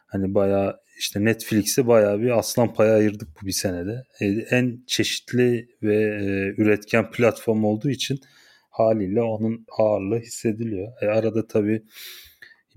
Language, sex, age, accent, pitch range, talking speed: Turkish, male, 30-49, native, 100-120 Hz, 115 wpm